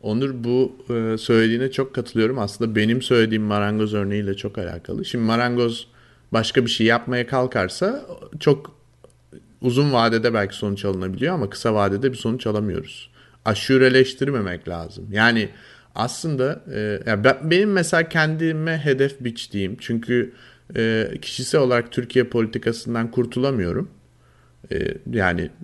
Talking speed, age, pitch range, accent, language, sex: 110 wpm, 30-49, 105-155 Hz, native, Turkish, male